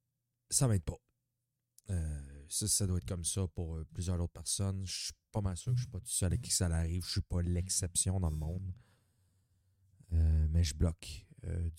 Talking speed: 220 wpm